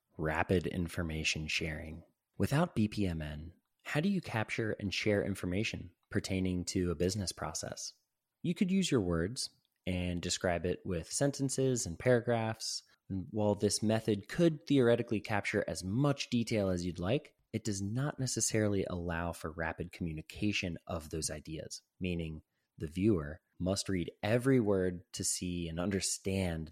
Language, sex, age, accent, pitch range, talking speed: English, male, 20-39, American, 90-115 Hz, 140 wpm